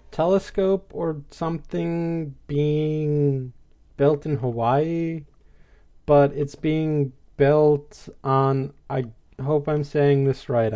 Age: 30-49